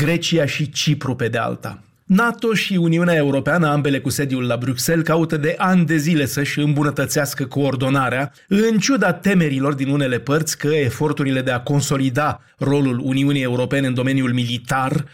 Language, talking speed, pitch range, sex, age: Romanian, 160 wpm, 135-170 Hz, male, 30-49